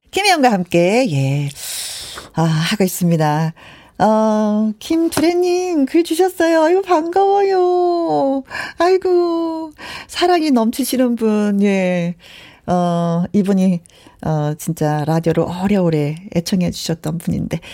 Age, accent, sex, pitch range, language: 40-59, native, female, 180-260 Hz, Korean